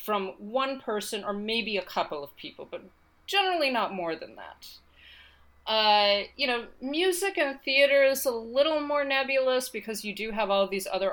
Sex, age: female, 40-59